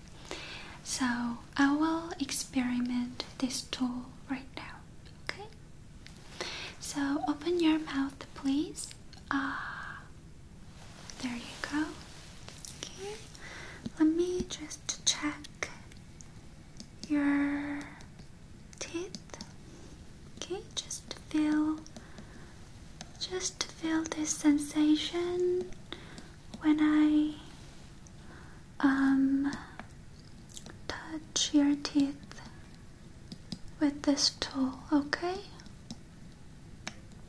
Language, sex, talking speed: English, female, 65 wpm